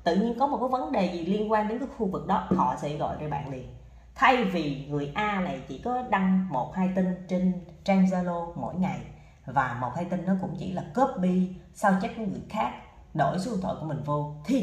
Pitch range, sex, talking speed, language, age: 170-220 Hz, female, 240 wpm, Vietnamese, 30-49